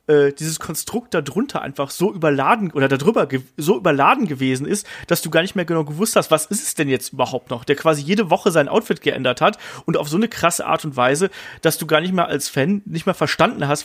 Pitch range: 145-190 Hz